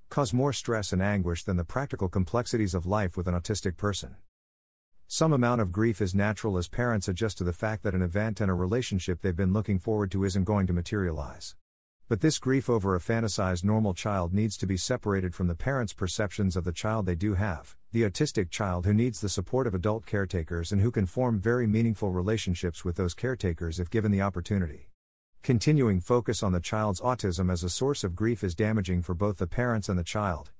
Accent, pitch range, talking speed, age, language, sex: American, 90-115 Hz, 210 wpm, 50-69, English, male